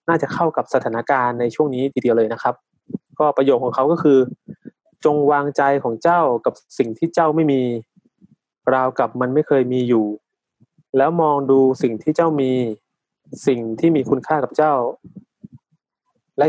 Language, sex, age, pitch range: Thai, male, 20-39, 125-155 Hz